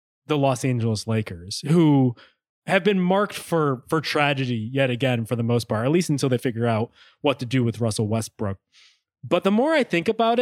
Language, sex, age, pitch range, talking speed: English, male, 20-39, 120-165 Hz, 200 wpm